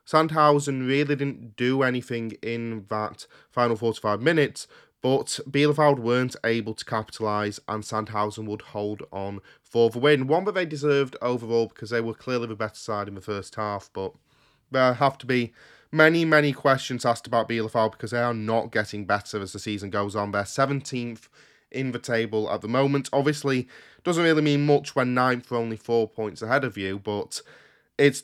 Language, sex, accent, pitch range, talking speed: English, male, British, 110-140 Hz, 185 wpm